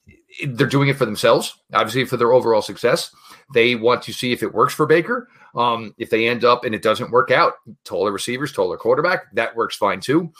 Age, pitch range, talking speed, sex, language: 40-59, 115-165 Hz, 215 wpm, male, English